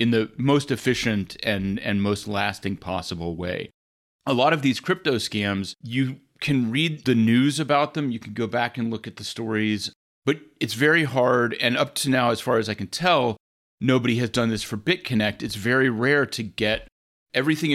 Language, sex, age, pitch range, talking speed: English, male, 30-49, 100-125 Hz, 195 wpm